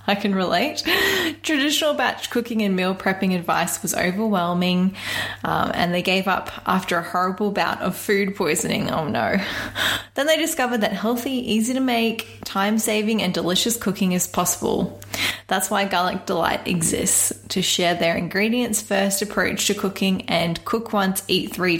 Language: English